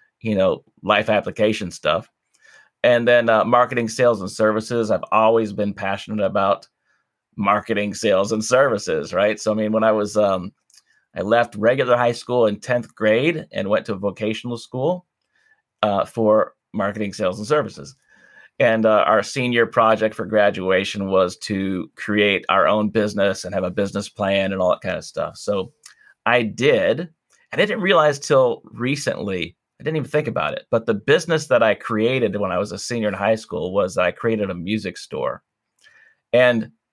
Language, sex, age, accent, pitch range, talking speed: English, male, 30-49, American, 105-125 Hz, 175 wpm